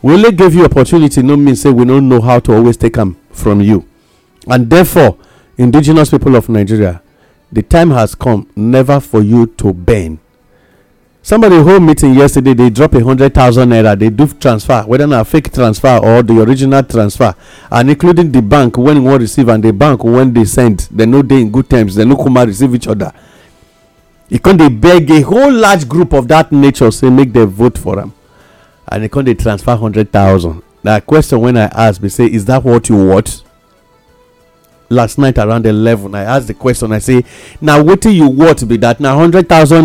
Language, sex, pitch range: English, male, 110-145 Hz